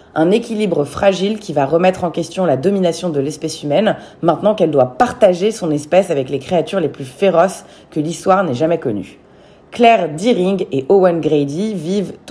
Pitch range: 150-200 Hz